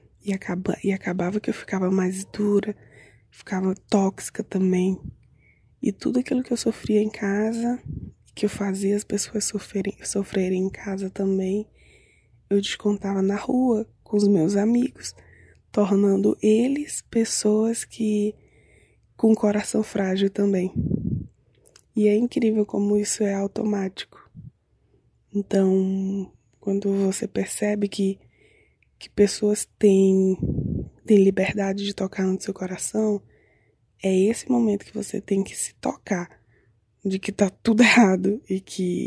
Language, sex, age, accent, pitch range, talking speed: Portuguese, female, 20-39, Brazilian, 185-210 Hz, 130 wpm